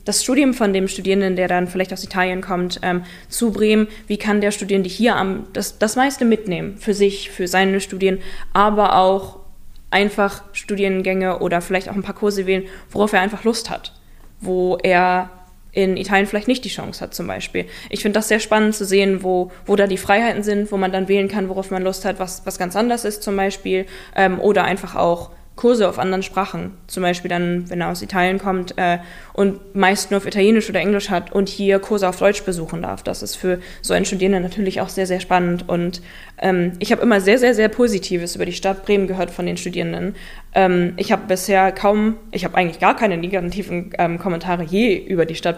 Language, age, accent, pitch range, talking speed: German, 20-39, German, 180-200 Hz, 215 wpm